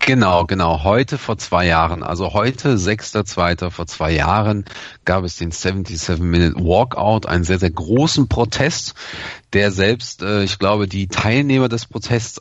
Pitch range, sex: 90-110 Hz, male